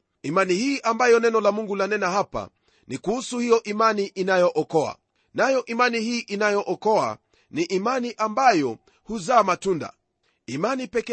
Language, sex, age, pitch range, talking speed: Swahili, male, 40-59, 190-235 Hz, 135 wpm